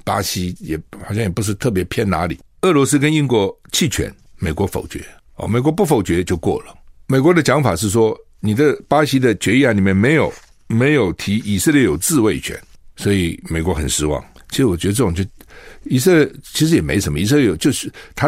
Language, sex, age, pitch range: Chinese, male, 60-79, 90-125 Hz